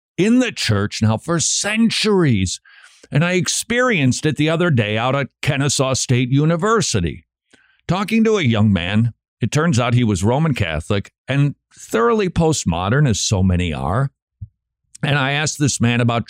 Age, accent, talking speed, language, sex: 50-69, American, 160 wpm, English, male